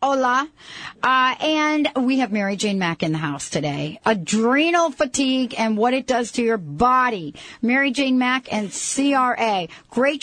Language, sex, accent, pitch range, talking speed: English, female, American, 210-255 Hz, 160 wpm